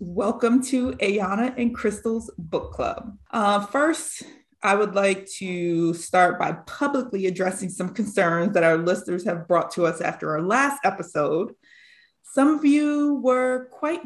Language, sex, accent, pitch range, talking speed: English, female, American, 175-250 Hz, 150 wpm